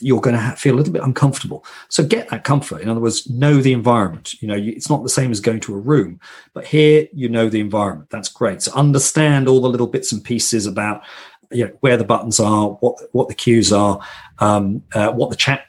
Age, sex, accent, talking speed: 40-59, male, British, 245 wpm